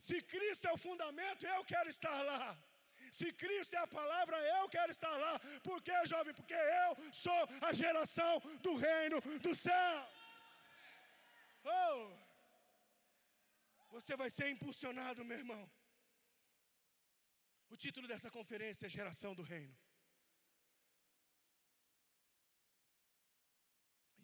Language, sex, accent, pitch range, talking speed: Portuguese, male, Brazilian, 210-325 Hz, 115 wpm